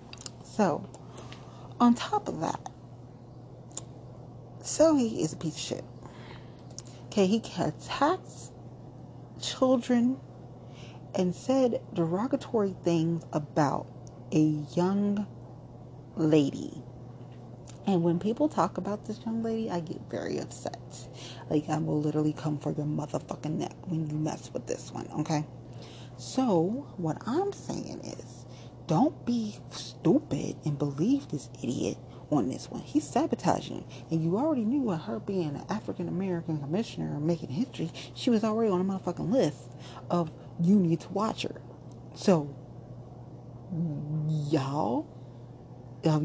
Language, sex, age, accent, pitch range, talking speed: English, female, 40-59, American, 125-185 Hz, 125 wpm